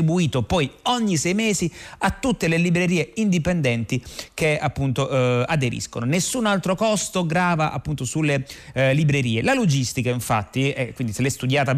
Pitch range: 125-170 Hz